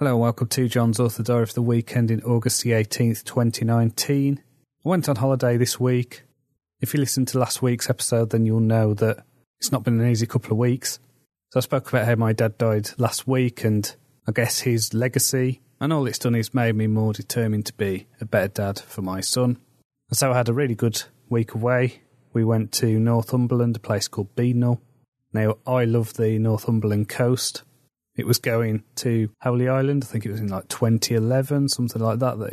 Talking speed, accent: 205 wpm, British